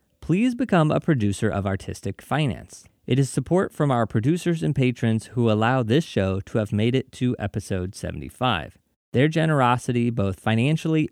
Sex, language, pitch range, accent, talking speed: male, English, 105-150 Hz, American, 160 wpm